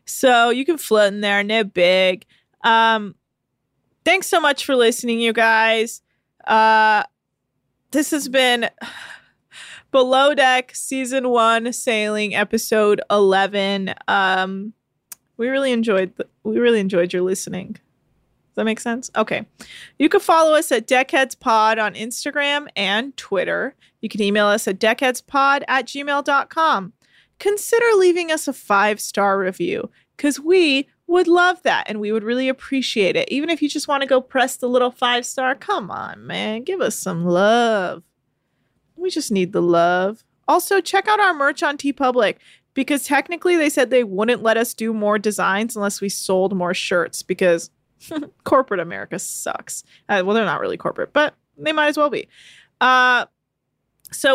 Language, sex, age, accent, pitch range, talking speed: English, female, 20-39, American, 200-285 Hz, 155 wpm